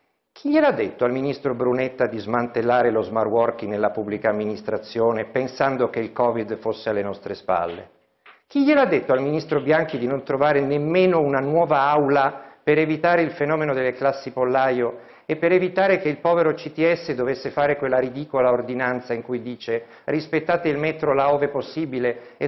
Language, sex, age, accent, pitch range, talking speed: Italian, male, 50-69, native, 125-165 Hz, 170 wpm